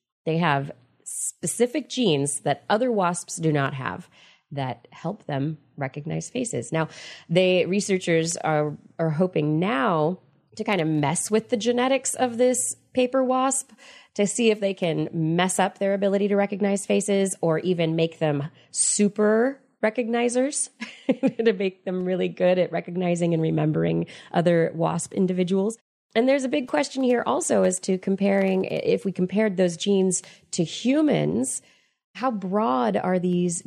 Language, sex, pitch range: English, female, 160-220 Hz